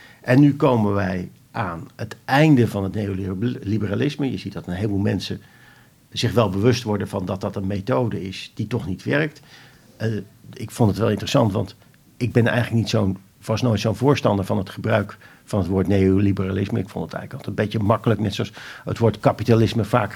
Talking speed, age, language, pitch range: 200 wpm, 50-69, Dutch, 105-125 Hz